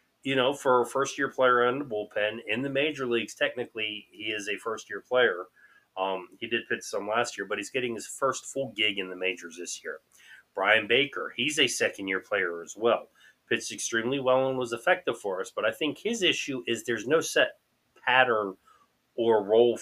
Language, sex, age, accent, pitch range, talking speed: English, male, 30-49, American, 105-140 Hz, 200 wpm